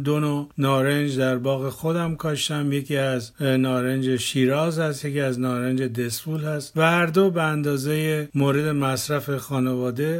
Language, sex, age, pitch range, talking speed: Persian, male, 50-69, 130-150 Hz, 140 wpm